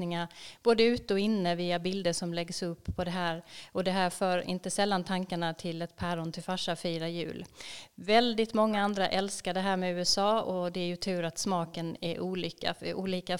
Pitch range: 175-200 Hz